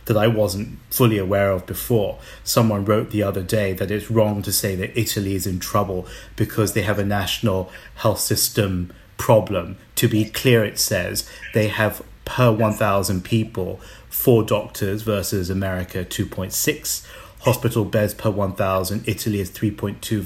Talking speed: 155 wpm